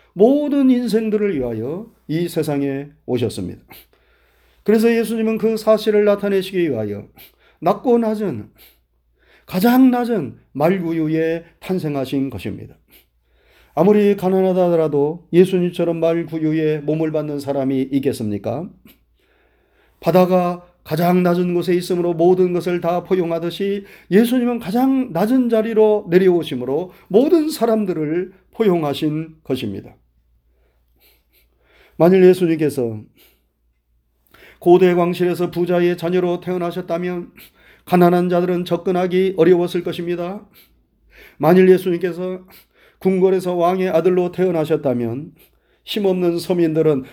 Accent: native